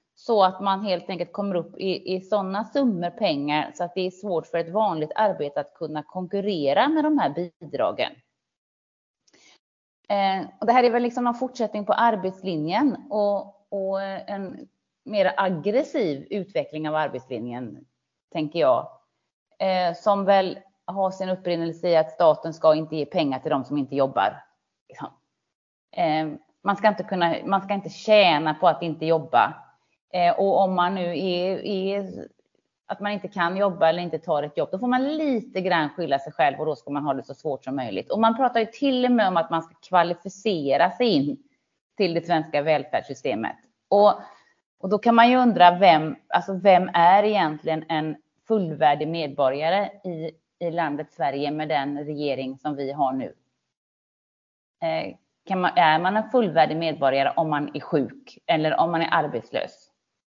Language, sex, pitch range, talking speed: Swedish, female, 155-205 Hz, 175 wpm